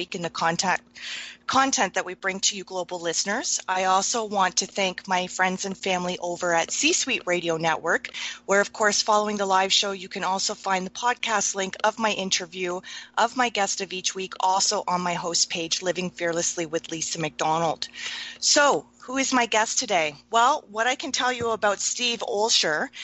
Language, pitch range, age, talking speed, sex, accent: English, 185-225 Hz, 30-49, 190 wpm, female, American